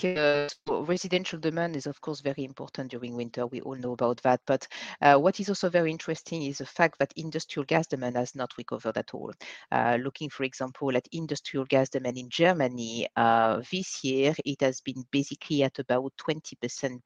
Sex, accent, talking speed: female, French, 185 wpm